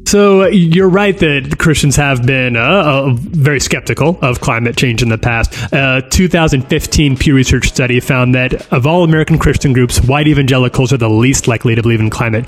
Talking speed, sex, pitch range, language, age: 190 wpm, male, 120-155 Hz, English, 30-49